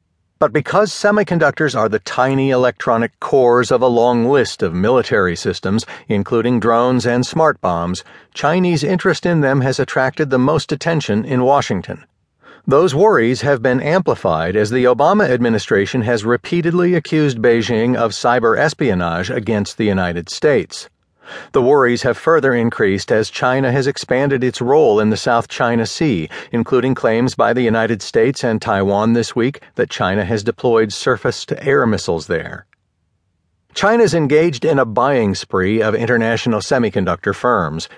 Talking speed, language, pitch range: 150 wpm, English, 105-140 Hz